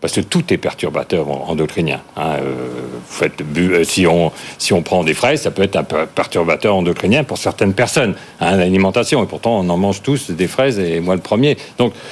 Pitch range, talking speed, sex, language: 95-125 Hz, 195 wpm, male, French